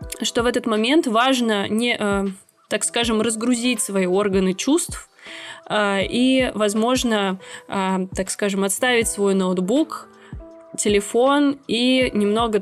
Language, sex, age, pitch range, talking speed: Russian, female, 20-39, 190-220 Hz, 105 wpm